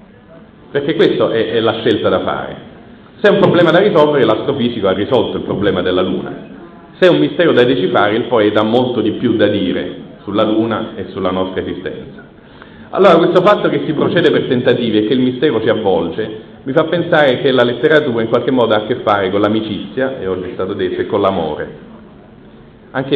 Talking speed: 205 wpm